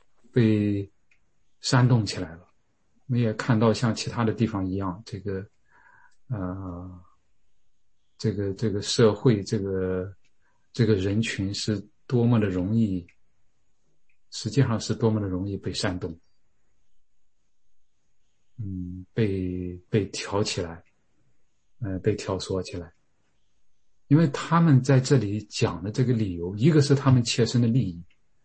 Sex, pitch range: male, 95-120 Hz